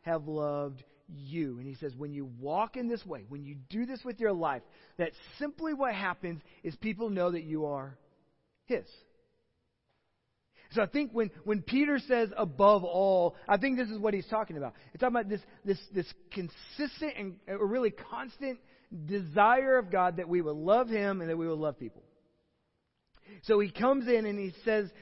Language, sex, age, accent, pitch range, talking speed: English, male, 40-59, American, 175-215 Hz, 185 wpm